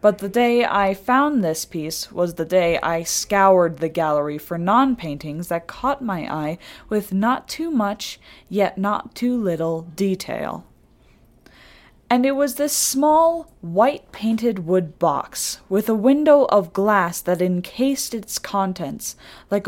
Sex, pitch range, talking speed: female, 170-215 Hz, 145 wpm